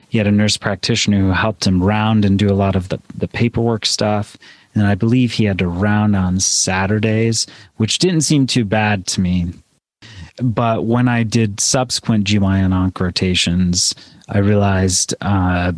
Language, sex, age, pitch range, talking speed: English, male, 30-49, 100-120 Hz, 165 wpm